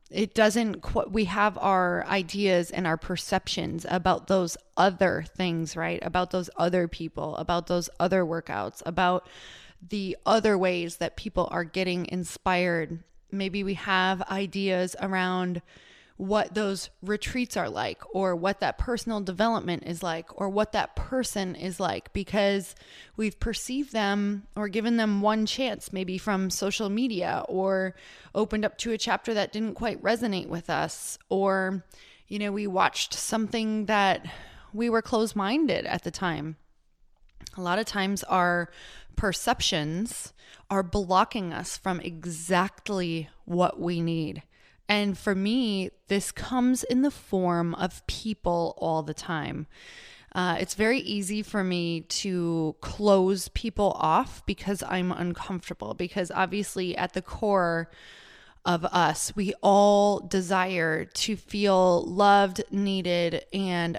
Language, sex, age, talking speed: English, female, 20-39, 140 wpm